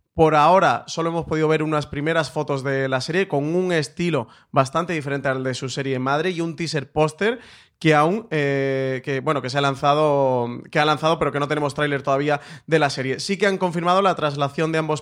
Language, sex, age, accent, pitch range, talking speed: Spanish, male, 30-49, Spanish, 135-160 Hz, 220 wpm